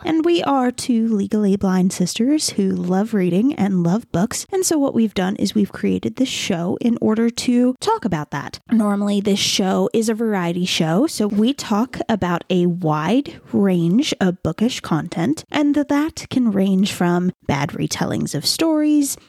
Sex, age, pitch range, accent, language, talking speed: female, 20-39, 185-260 Hz, American, English, 170 wpm